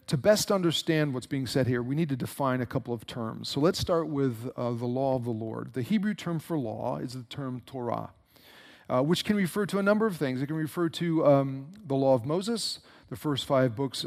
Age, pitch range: 40-59, 125-170 Hz